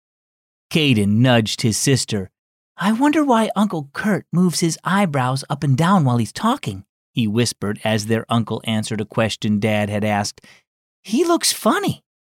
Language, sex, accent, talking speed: English, male, American, 155 wpm